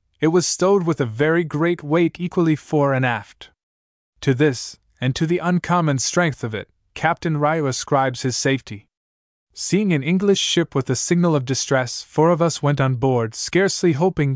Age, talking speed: 20-39, 180 wpm